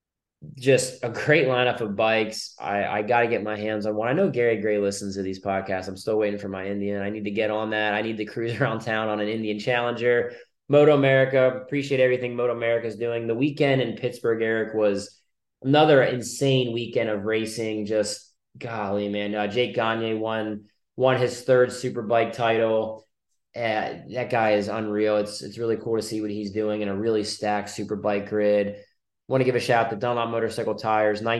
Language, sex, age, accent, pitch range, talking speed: English, male, 20-39, American, 110-125 Hz, 205 wpm